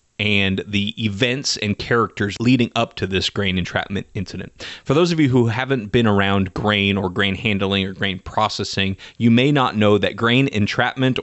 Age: 30-49